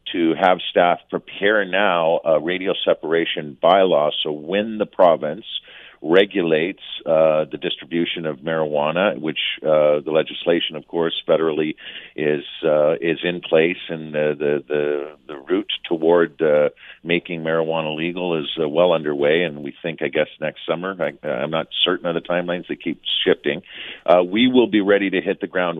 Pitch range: 80-90 Hz